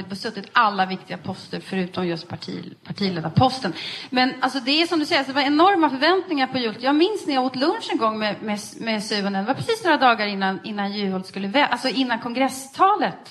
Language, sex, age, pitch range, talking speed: Swedish, female, 30-49, 225-320 Hz, 215 wpm